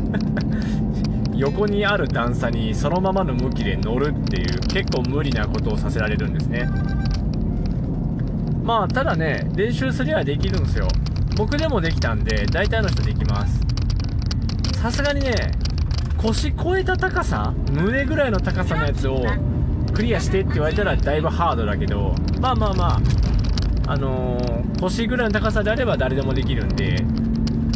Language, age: Japanese, 20-39